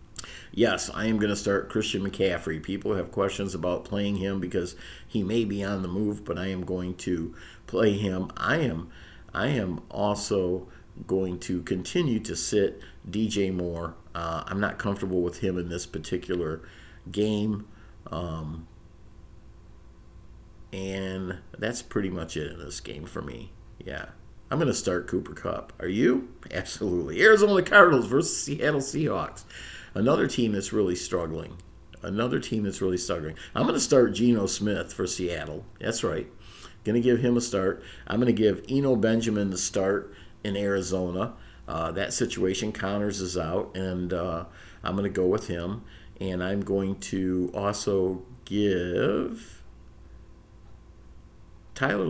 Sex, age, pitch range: male, 50-69, 85-105 Hz